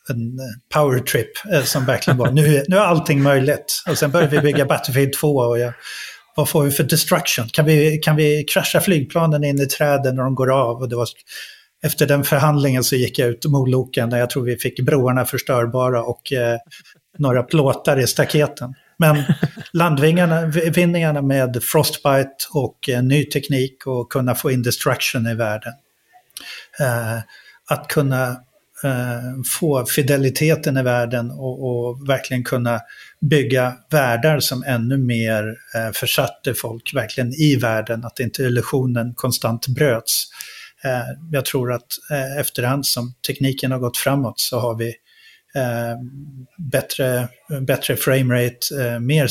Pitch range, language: 125-150 Hz, Swedish